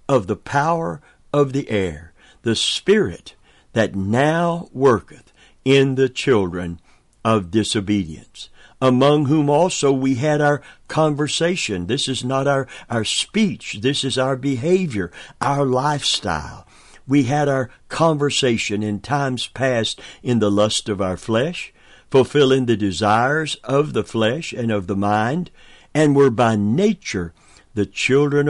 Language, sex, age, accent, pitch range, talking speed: English, male, 60-79, American, 105-145 Hz, 135 wpm